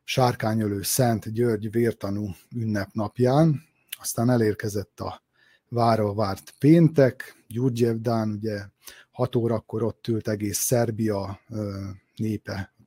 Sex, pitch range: male, 110-130 Hz